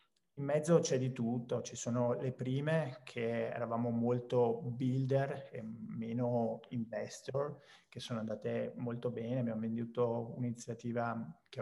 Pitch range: 115-130 Hz